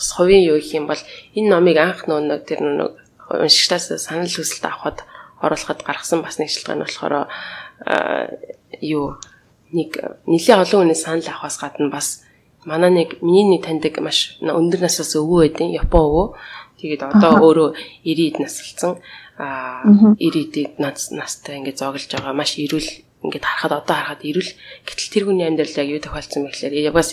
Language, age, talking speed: English, 20-39, 150 wpm